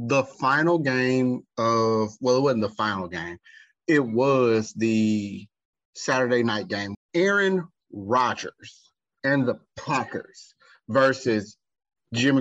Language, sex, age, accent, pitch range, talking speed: English, male, 30-49, American, 105-125 Hz, 110 wpm